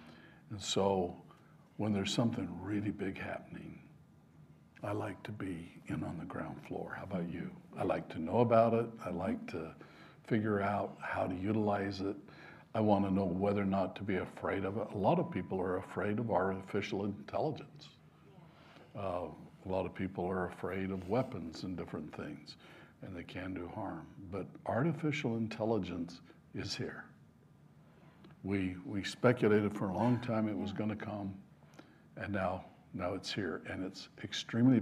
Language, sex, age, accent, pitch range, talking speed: English, male, 60-79, American, 95-125 Hz, 165 wpm